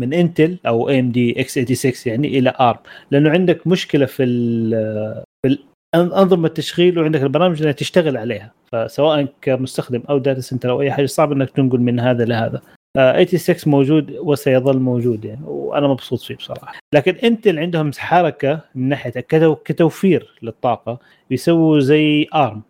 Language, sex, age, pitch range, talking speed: Arabic, male, 30-49, 125-155 Hz, 155 wpm